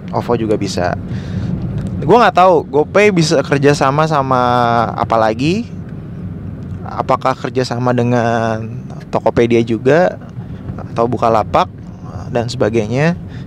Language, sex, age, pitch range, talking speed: Indonesian, male, 20-39, 110-140 Hz, 95 wpm